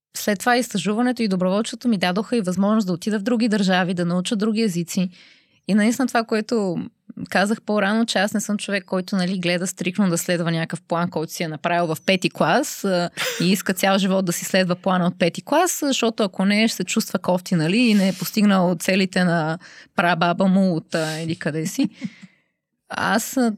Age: 20-39